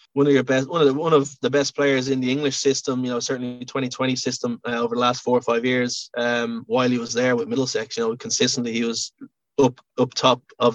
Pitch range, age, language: 120-135 Hz, 20-39, English